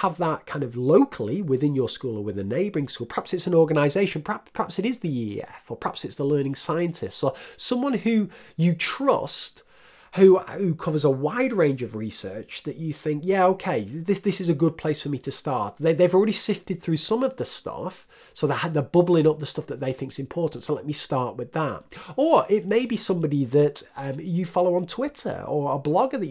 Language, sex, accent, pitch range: English, male, British, 115-175 Hz